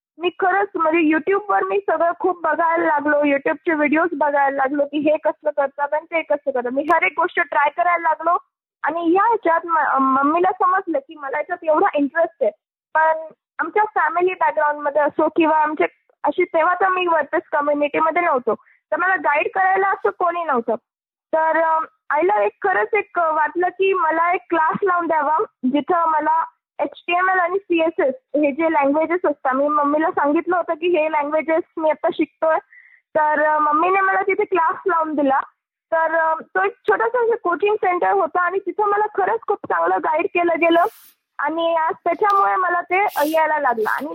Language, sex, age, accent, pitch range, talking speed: Marathi, female, 20-39, native, 300-365 Hz, 175 wpm